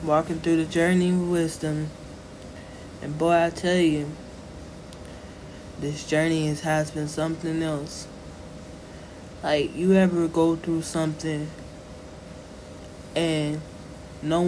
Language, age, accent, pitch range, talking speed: English, 20-39, American, 100-165 Hz, 105 wpm